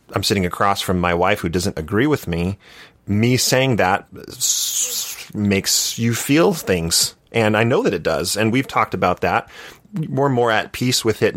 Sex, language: male, English